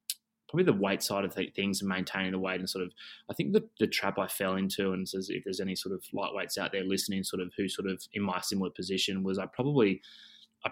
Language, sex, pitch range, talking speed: English, male, 95-100 Hz, 250 wpm